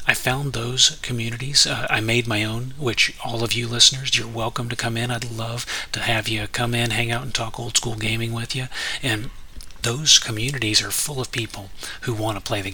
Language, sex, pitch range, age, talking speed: English, male, 110-125 Hz, 30-49, 215 wpm